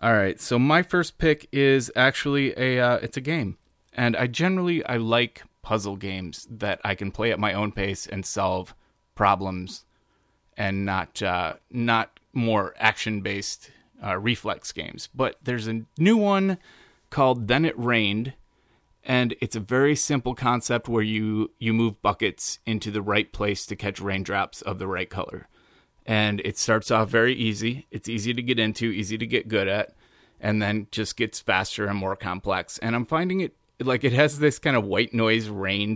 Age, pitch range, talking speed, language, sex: 30-49, 100-125 Hz, 180 wpm, English, male